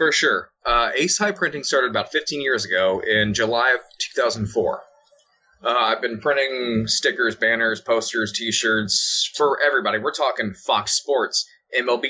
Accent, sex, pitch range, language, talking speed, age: American, male, 110-185 Hz, English, 150 wpm, 20-39